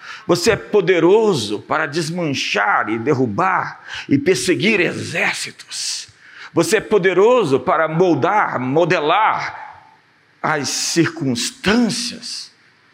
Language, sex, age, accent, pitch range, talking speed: Portuguese, male, 50-69, Brazilian, 160-230 Hz, 85 wpm